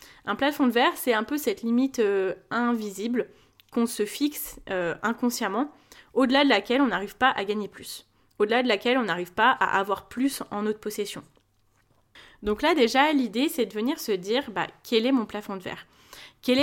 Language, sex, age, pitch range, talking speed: French, female, 20-39, 200-260 Hz, 195 wpm